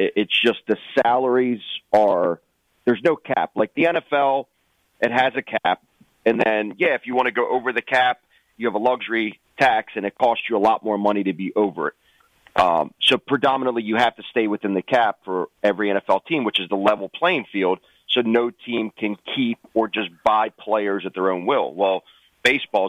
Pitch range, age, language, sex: 100-120 Hz, 40-59, English, male